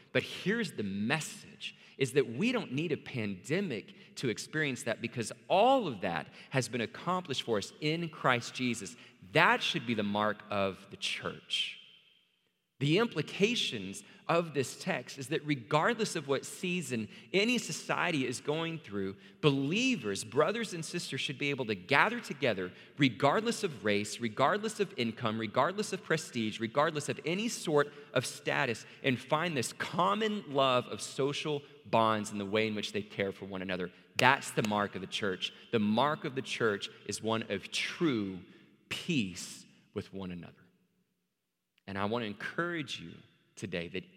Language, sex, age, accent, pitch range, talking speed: English, male, 40-59, American, 105-170 Hz, 165 wpm